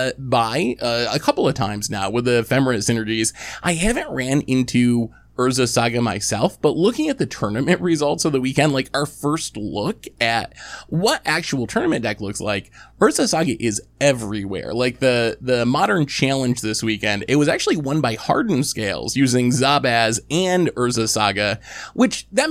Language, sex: English, male